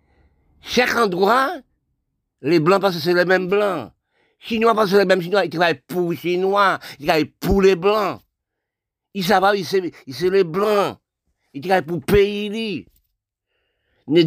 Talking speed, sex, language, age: 175 wpm, male, French, 60-79